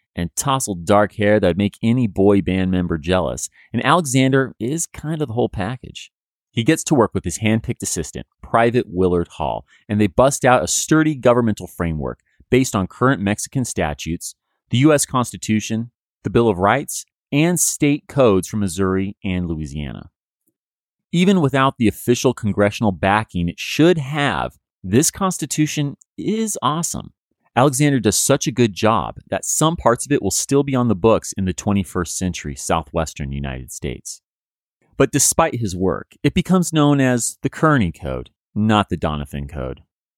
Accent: American